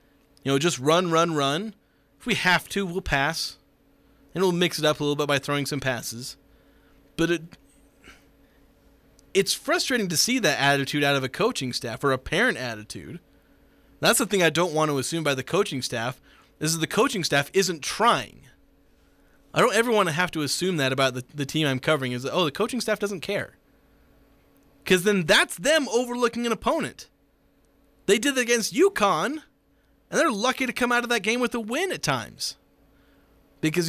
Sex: male